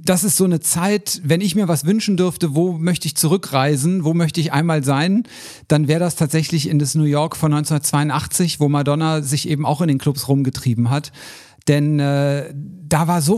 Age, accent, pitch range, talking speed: 50-69, German, 145-175 Hz, 200 wpm